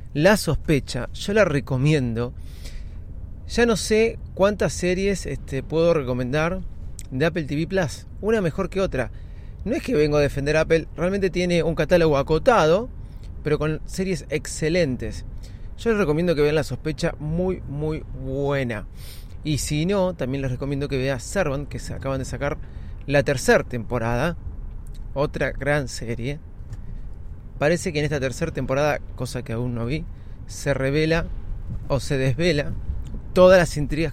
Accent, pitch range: Argentinian, 105-155 Hz